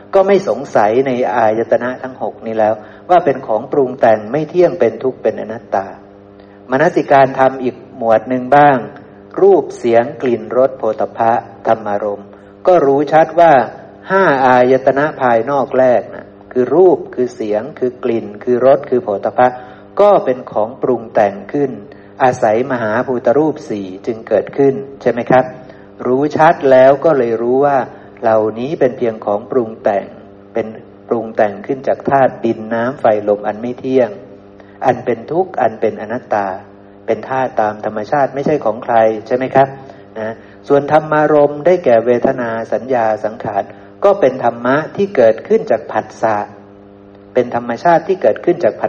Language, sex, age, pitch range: Thai, male, 60-79, 105-140 Hz